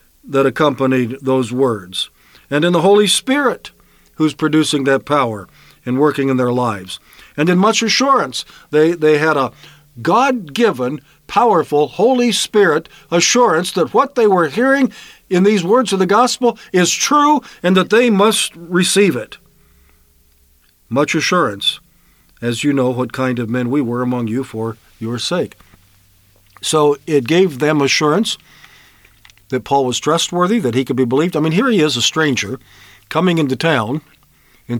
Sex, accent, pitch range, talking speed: male, American, 135-180 Hz, 155 wpm